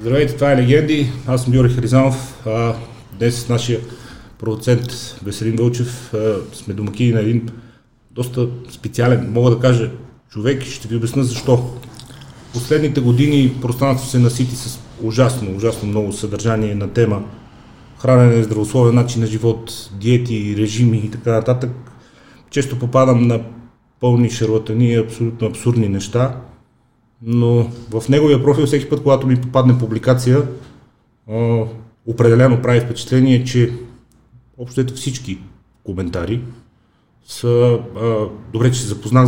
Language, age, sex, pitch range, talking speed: Bulgarian, 40-59, male, 115-125 Hz, 130 wpm